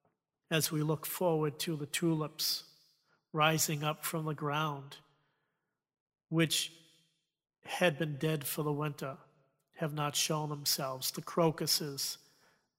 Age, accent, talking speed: 40-59, American, 115 wpm